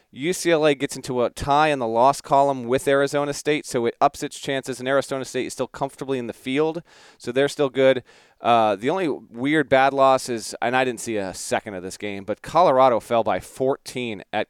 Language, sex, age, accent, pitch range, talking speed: English, male, 30-49, American, 115-140 Hz, 215 wpm